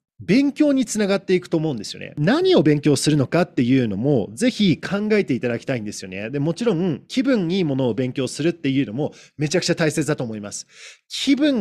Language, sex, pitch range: Japanese, male, 135-215 Hz